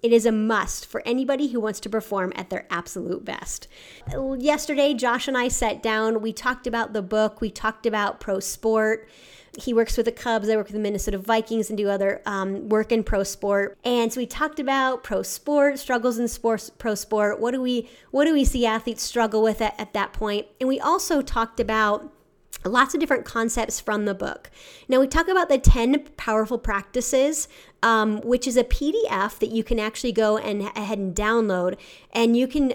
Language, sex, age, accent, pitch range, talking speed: English, female, 30-49, American, 210-250 Hz, 205 wpm